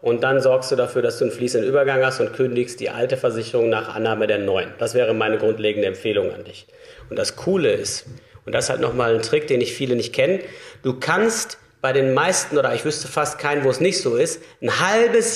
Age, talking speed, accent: 40-59, 235 wpm, German